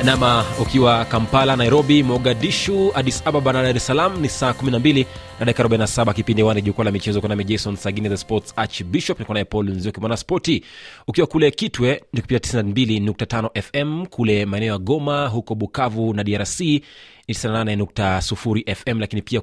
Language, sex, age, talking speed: Swahili, male, 30-49, 155 wpm